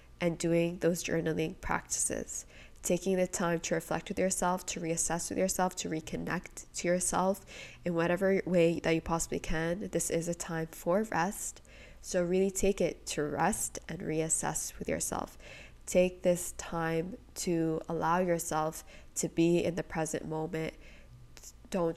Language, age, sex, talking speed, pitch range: English, 20-39, female, 155 wpm, 160-180 Hz